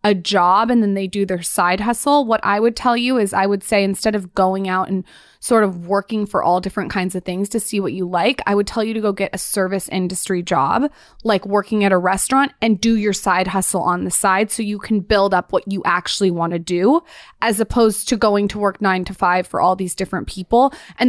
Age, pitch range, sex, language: 20-39, 185-215 Hz, female, English